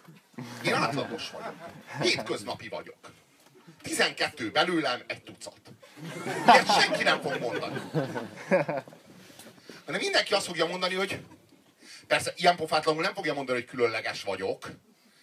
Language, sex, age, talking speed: Hungarian, male, 40-59, 120 wpm